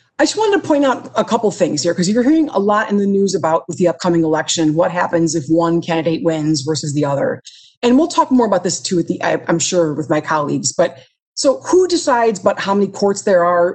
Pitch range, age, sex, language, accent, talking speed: 170-225 Hz, 30-49, female, English, American, 240 wpm